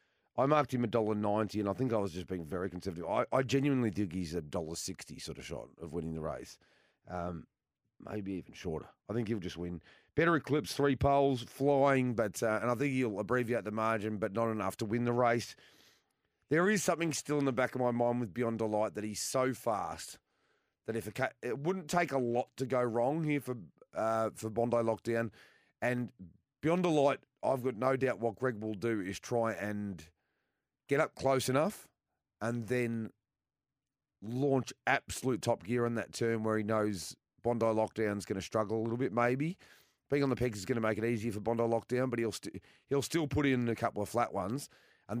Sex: male